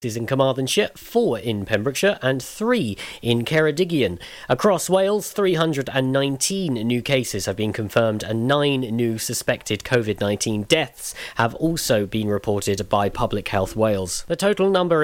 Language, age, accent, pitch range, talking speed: English, 40-59, British, 115-155 Hz, 140 wpm